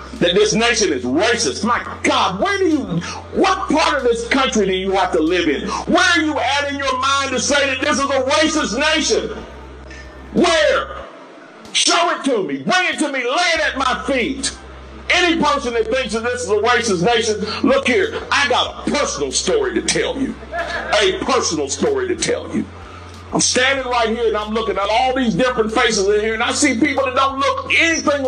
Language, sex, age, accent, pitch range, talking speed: English, male, 50-69, American, 235-310 Hz, 210 wpm